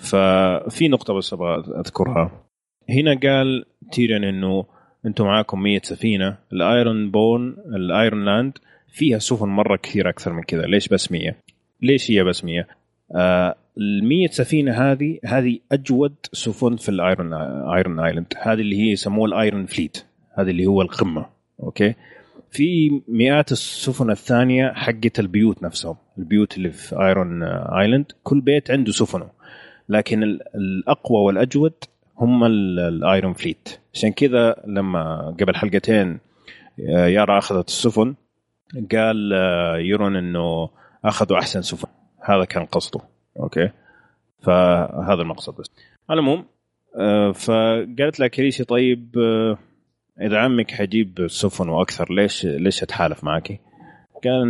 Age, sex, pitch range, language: 30-49, male, 95-120 Hz, Arabic